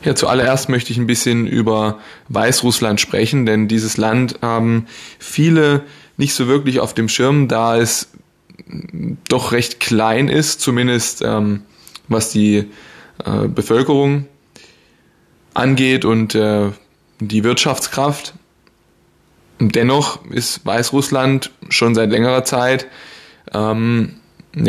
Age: 20-39